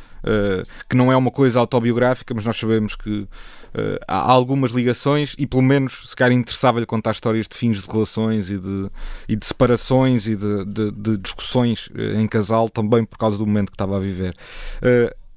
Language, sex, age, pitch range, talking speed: Portuguese, male, 20-39, 110-135 Hz, 190 wpm